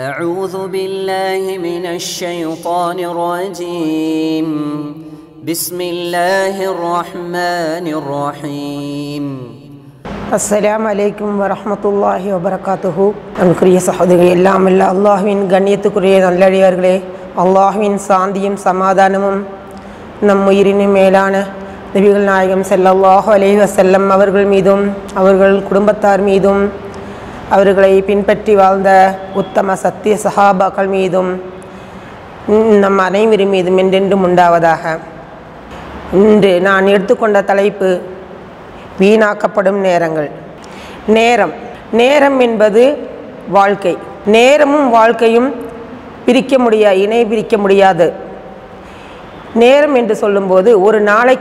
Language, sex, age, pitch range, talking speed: English, female, 30-49, 180-205 Hz, 90 wpm